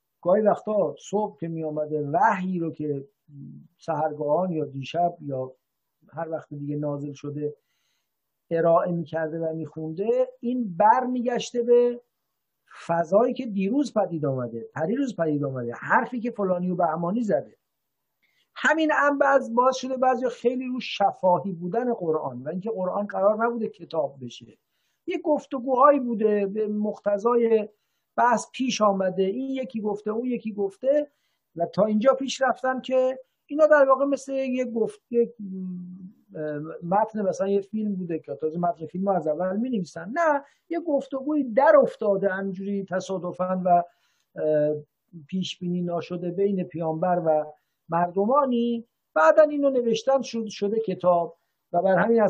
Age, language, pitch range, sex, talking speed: 50-69, English, 165-240 Hz, male, 140 wpm